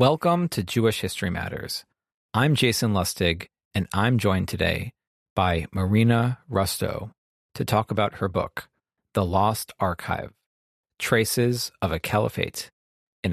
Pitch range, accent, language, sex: 90-115 Hz, American, English, male